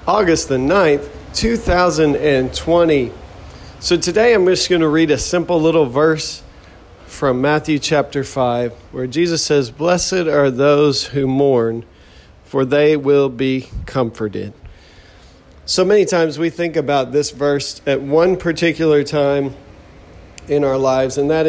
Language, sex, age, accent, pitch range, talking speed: English, male, 40-59, American, 125-160 Hz, 135 wpm